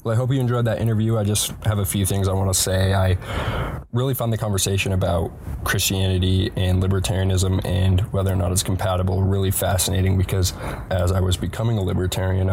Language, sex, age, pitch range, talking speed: English, male, 20-39, 95-105 Hz, 190 wpm